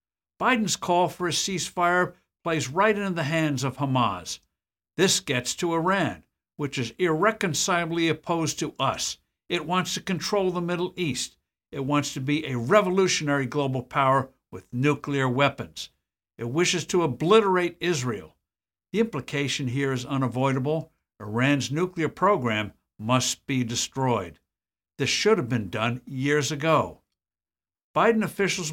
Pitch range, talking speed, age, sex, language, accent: 125-175 Hz, 135 wpm, 60-79, male, English, American